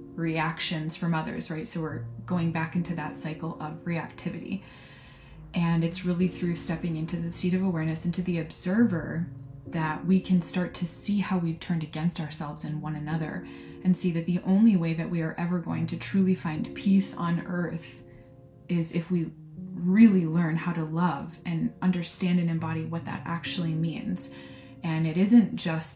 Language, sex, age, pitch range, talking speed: English, female, 20-39, 165-230 Hz, 180 wpm